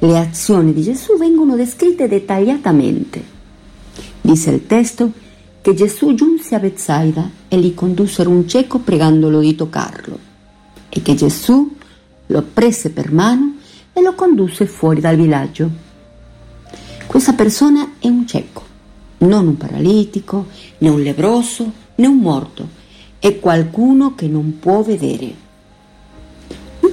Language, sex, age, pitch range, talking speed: Italian, female, 50-69, 160-240 Hz, 125 wpm